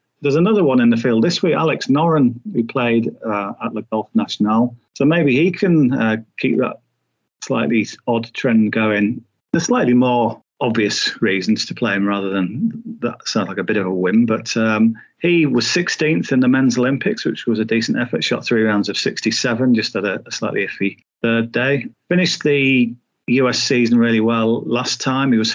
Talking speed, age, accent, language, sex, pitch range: 195 wpm, 40-59, British, English, male, 110-135 Hz